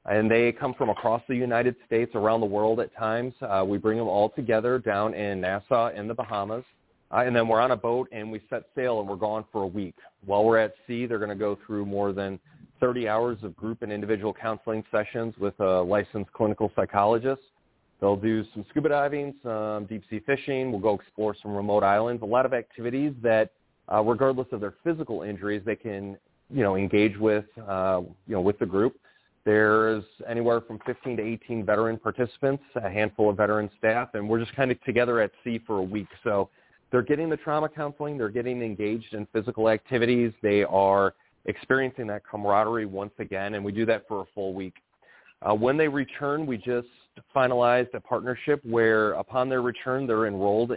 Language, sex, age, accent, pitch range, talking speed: English, male, 30-49, American, 105-125 Hz, 200 wpm